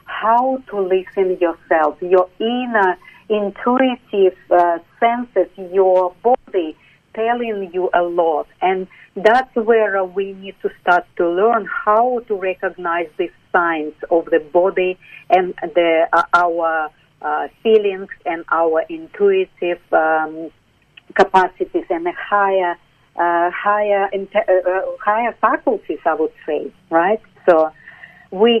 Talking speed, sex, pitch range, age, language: 120 wpm, female, 175-220 Hz, 50-69, English